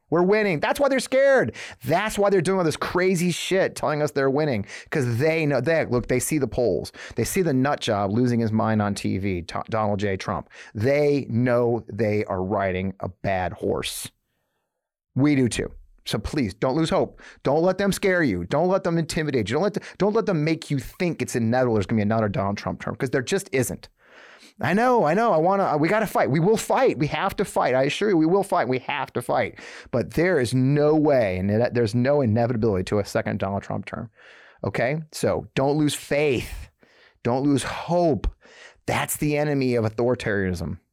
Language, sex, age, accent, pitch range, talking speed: English, male, 30-49, American, 110-160 Hz, 210 wpm